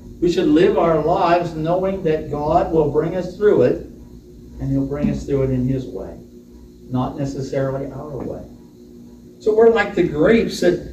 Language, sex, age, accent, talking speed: English, male, 60-79, American, 175 wpm